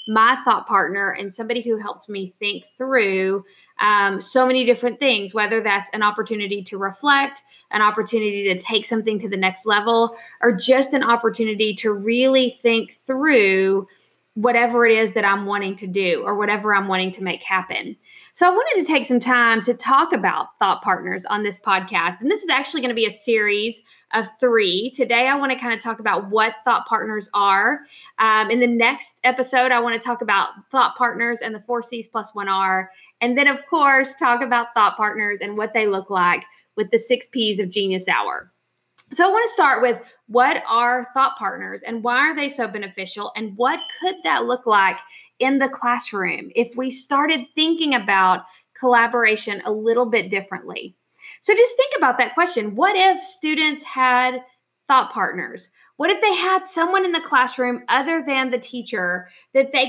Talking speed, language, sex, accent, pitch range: 190 wpm, English, female, American, 210-265 Hz